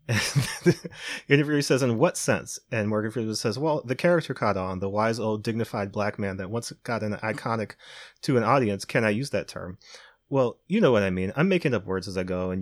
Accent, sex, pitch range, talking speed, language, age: American, male, 105-130 Hz, 235 wpm, English, 30-49